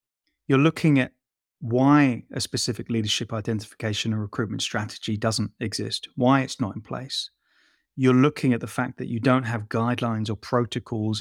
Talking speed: 160 wpm